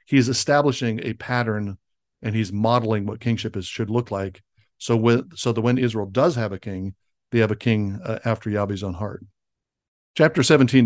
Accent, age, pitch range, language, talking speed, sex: American, 60-79, 105-120 Hz, English, 190 wpm, male